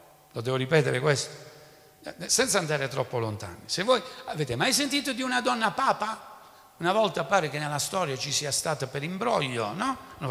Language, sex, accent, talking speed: Italian, male, native, 175 wpm